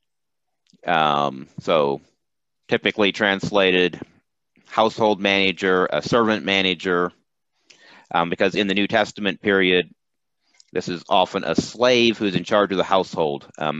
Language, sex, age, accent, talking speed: English, male, 30-49, American, 125 wpm